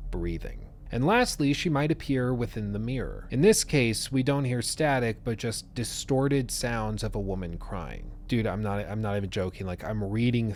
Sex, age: male, 30-49